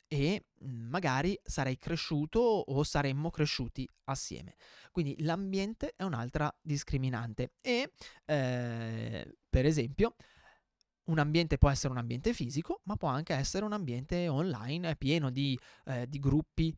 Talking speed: 130 wpm